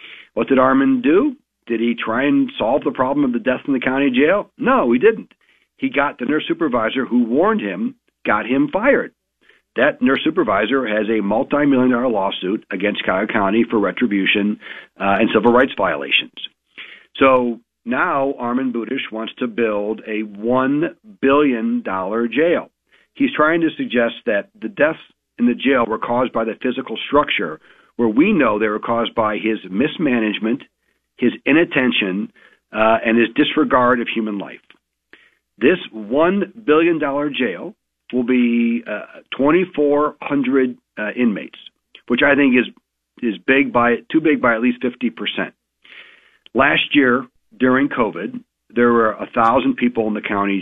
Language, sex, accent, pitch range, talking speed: English, male, American, 115-145 Hz, 160 wpm